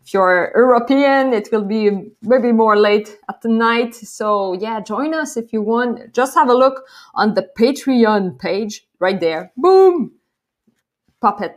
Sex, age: female, 20-39